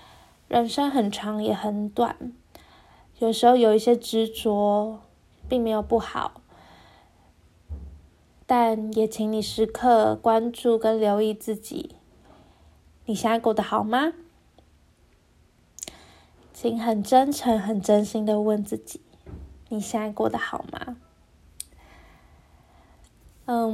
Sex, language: female, Chinese